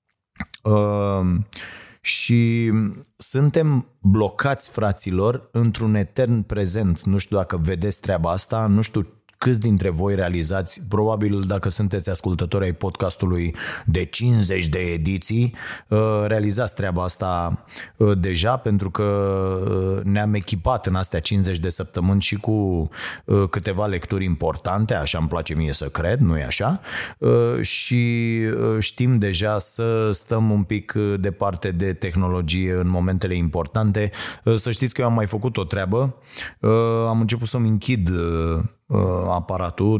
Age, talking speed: 20-39, 125 wpm